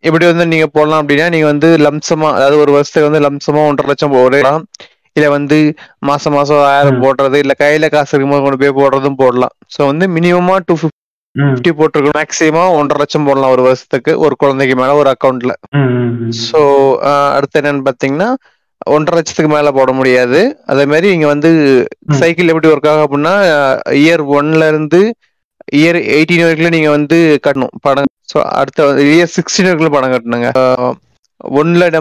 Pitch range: 140-155 Hz